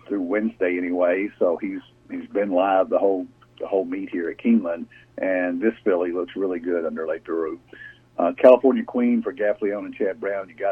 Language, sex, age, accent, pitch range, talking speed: English, male, 50-69, American, 90-130 Hz, 195 wpm